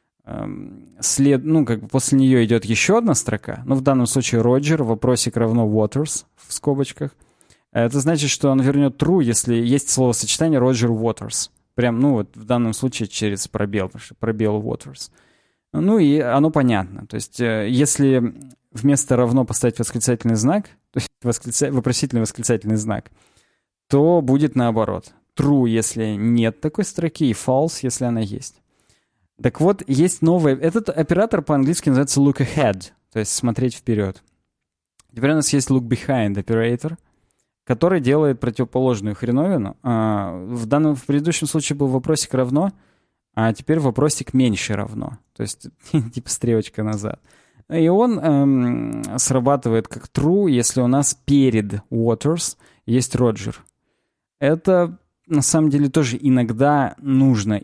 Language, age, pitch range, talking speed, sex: Russian, 20-39, 115-145 Hz, 140 wpm, male